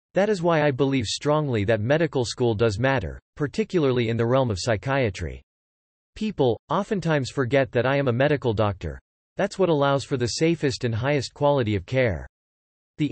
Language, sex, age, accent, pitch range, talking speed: English, male, 40-59, American, 110-150 Hz, 175 wpm